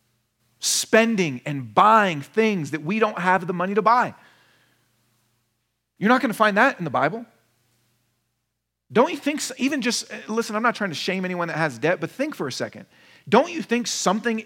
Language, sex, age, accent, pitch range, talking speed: English, male, 40-59, American, 165-250 Hz, 185 wpm